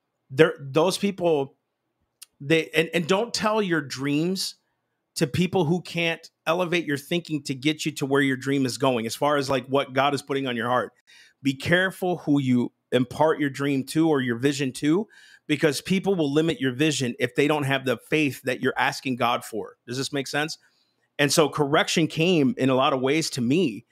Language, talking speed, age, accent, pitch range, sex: English, 205 wpm, 40-59, American, 135-165 Hz, male